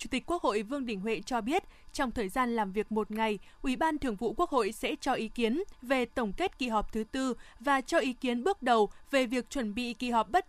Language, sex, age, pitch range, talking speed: Vietnamese, female, 20-39, 230-285 Hz, 265 wpm